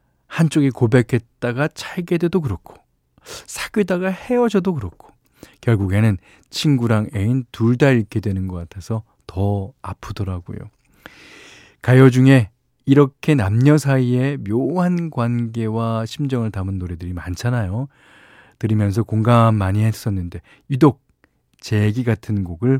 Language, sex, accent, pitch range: Korean, male, native, 100-140 Hz